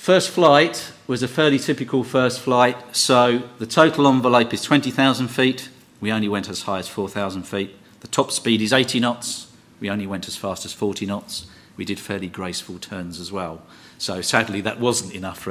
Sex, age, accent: male, 40-59, British